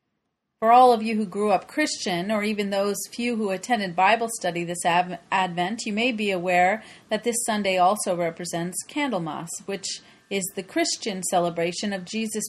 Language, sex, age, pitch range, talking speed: English, female, 30-49, 185-240 Hz, 170 wpm